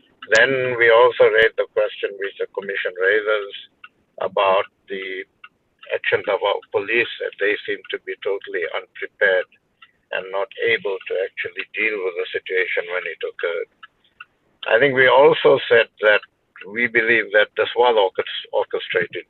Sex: male